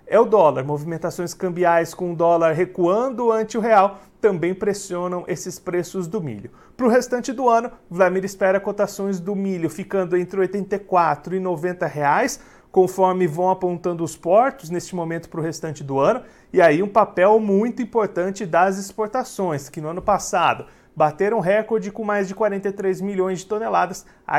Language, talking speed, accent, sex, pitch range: Portuguese, 175 wpm, Brazilian, male, 170-210 Hz